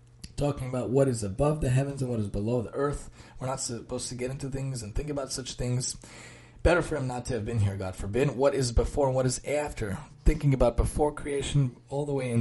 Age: 30-49